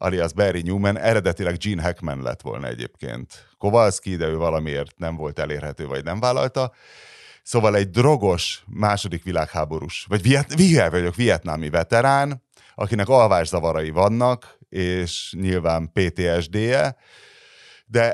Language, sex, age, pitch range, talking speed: Hungarian, male, 30-49, 80-110 Hz, 120 wpm